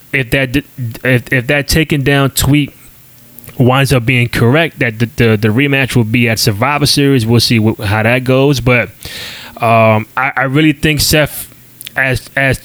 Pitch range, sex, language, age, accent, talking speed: 115-140 Hz, male, English, 20-39, American, 175 wpm